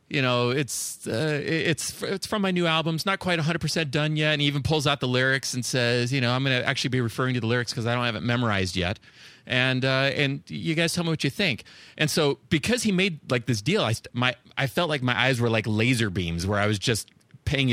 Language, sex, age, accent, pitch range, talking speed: English, male, 30-49, American, 115-155 Hz, 265 wpm